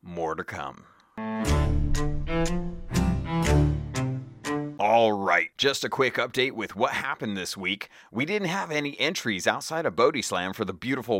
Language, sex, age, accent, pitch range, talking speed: English, male, 30-49, American, 105-145 Hz, 135 wpm